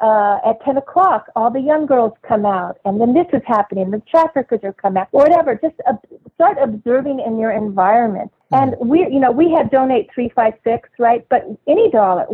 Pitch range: 210-255 Hz